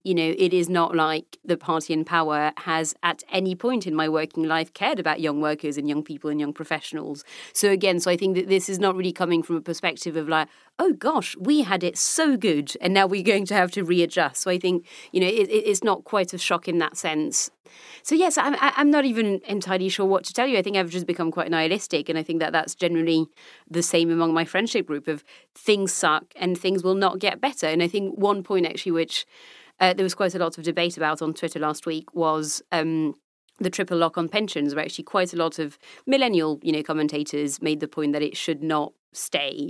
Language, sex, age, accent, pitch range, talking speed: English, female, 30-49, British, 160-200 Hz, 235 wpm